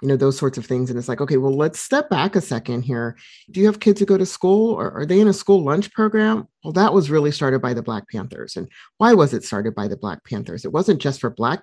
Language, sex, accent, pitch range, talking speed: English, male, American, 125-160 Hz, 290 wpm